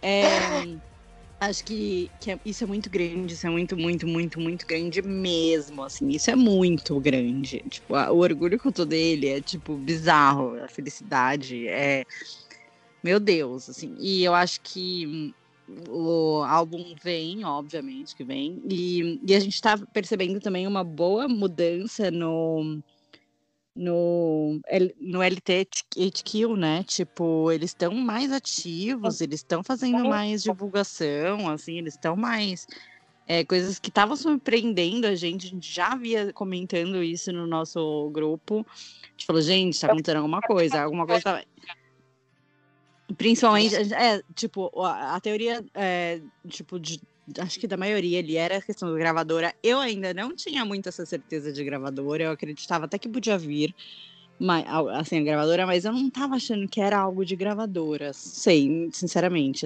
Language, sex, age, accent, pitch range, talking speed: Portuguese, female, 20-39, Brazilian, 160-205 Hz, 155 wpm